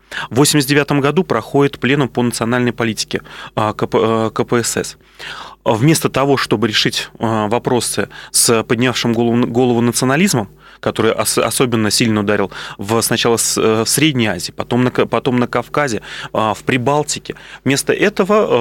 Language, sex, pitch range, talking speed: Russian, male, 115-135 Hz, 120 wpm